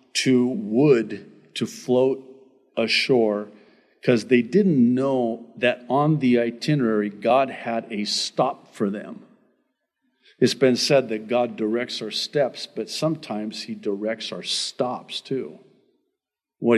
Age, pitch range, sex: 50-69, 120-185 Hz, male